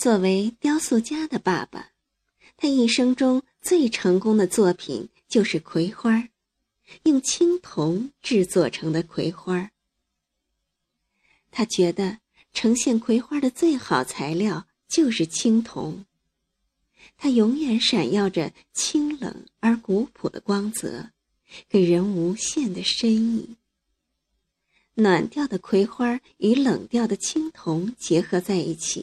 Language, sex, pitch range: Chinese, female, 180-245 Hz